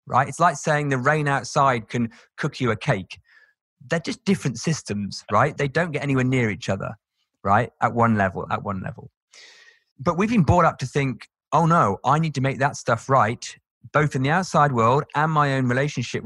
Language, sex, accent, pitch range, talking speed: English, male, British, 110-150 Hz, 205 wpm